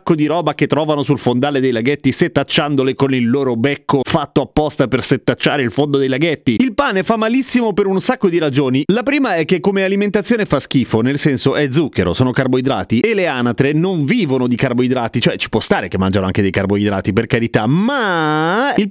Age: 30-49